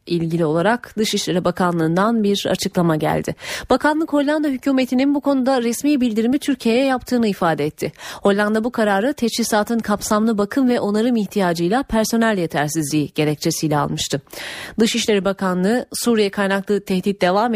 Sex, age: female, 30-49